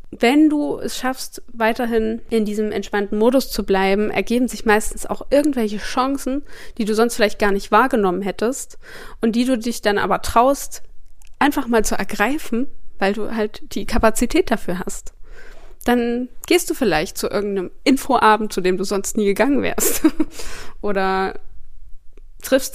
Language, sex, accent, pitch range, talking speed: German, female, German, 210-260 Hz, 155 wpm